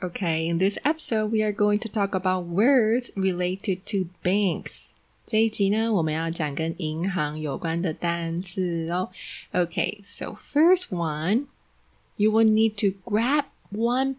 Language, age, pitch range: Chinese, 20-39, 170-220 Hz